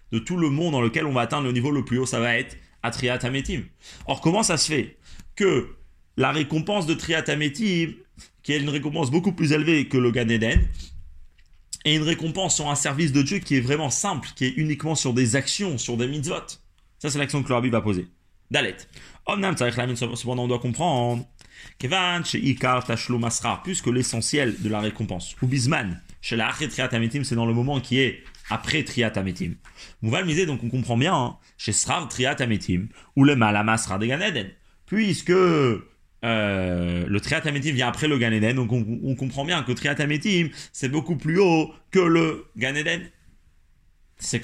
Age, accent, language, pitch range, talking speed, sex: 30-49, French, French, 115-150 Hz, 180 wpm, male